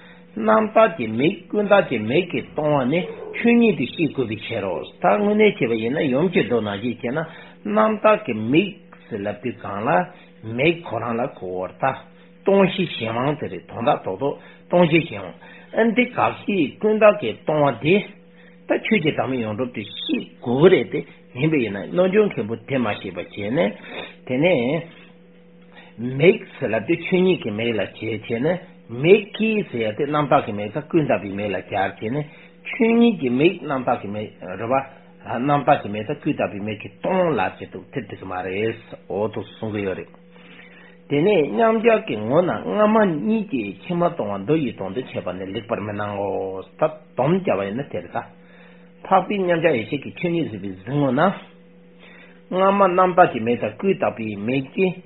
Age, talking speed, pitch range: 60-79, 55 wpm, 115-185 Hz